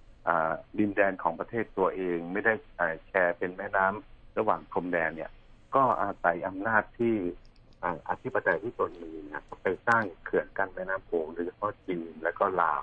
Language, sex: Thai, male